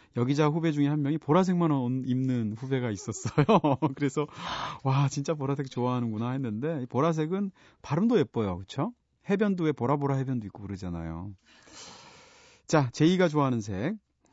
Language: Korean